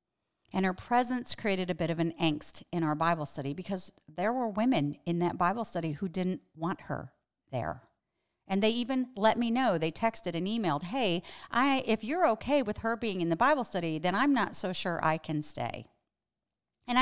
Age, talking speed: 40-59, 200 wpm